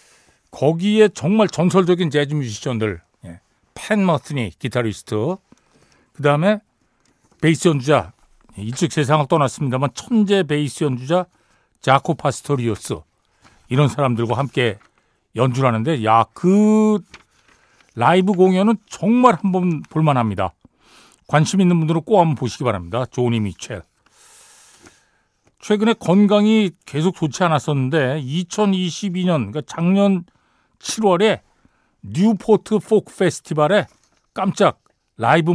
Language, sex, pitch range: Korean, male, 130-190 Hz